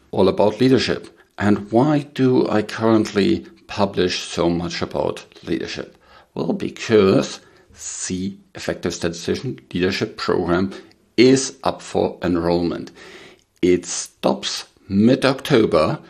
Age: 50-69